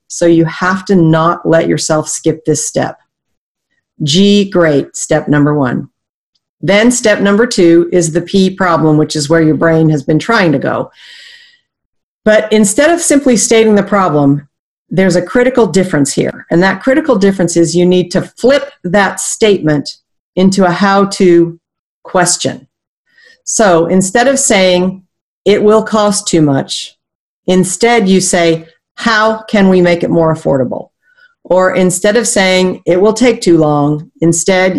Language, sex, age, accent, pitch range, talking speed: English, female, 40-59, American, 165-210 Hz, 155 wpm